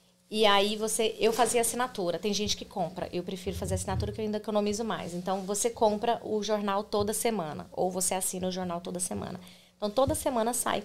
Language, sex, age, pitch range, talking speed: Portuguese, female, 20-39, 185-225 Hz, 205 wpm